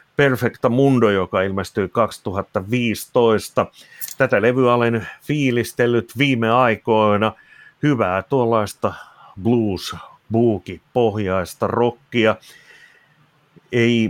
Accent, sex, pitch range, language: native, male, 100-120 Hz, Finnish